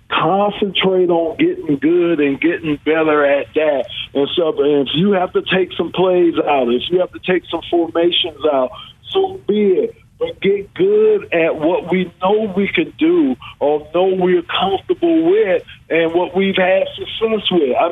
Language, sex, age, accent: English, male, 50-69, American